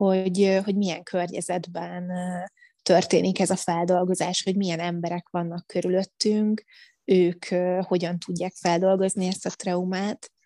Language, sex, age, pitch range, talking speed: Hungarian, female, 20-39, 180-195 Hz, 115 wpm